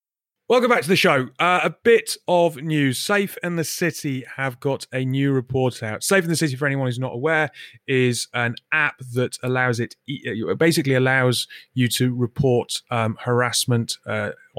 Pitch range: 110-135 Hz